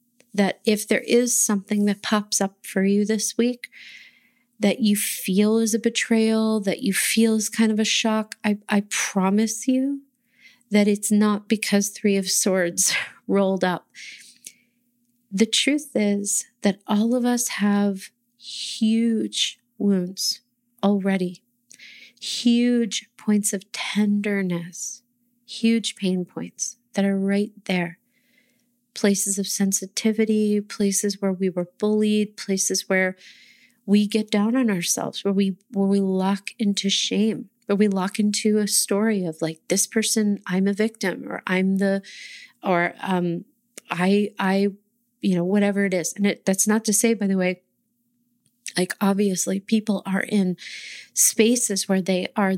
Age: 30-49